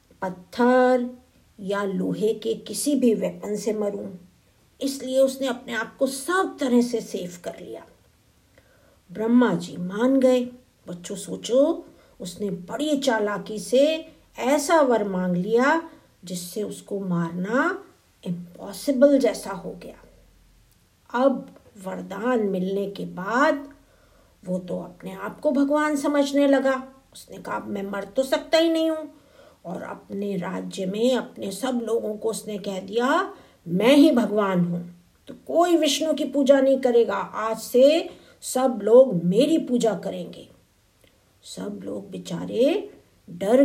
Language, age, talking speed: Hindi, 50-69, 130 wpm